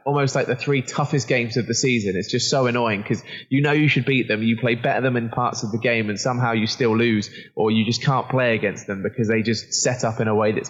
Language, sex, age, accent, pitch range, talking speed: English, male, 20-39, British, 110-130 Hz, 285 wpm